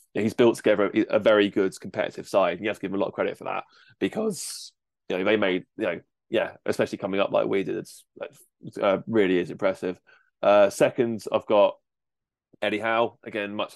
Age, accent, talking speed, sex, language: 20-39, British, 210 wpm, male, English